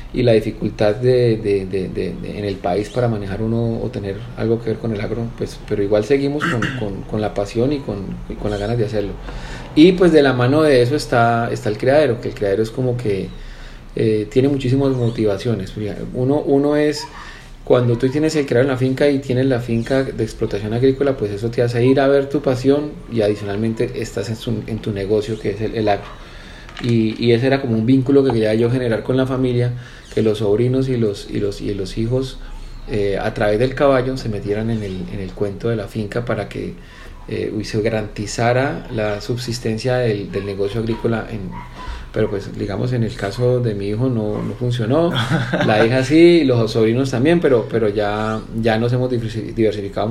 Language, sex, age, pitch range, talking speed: Spanish, male, 30-49, 105-125 Hz, 210 wpm